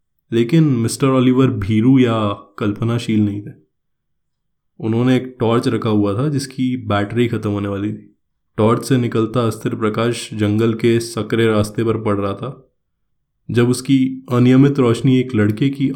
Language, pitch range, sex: Hindi, 110-135 Hz, male